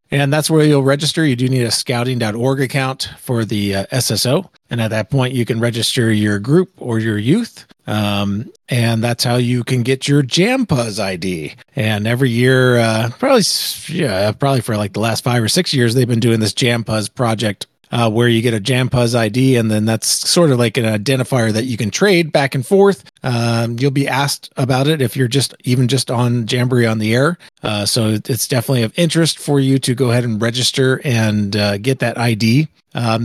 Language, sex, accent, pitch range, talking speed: English, male, American, 110-135 Hz, 210 wpm